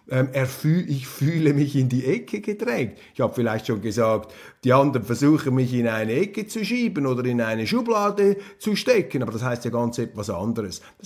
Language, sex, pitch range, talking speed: German, male, 120-180 Hz, 190 wpm